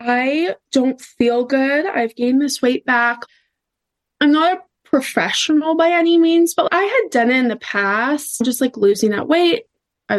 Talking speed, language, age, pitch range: 175 wpm, English, 20-39, 215-270 Hz